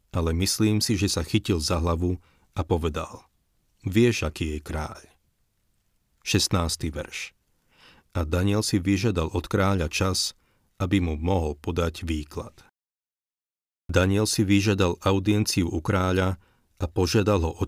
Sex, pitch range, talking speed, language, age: male, 85-100 Hz, 130 wpm, Slovak, 40-59